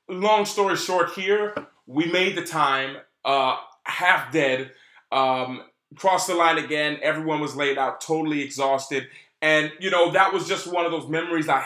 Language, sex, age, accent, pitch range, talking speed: English, male, 20-39, American, 135-170 Hz, 170 wpm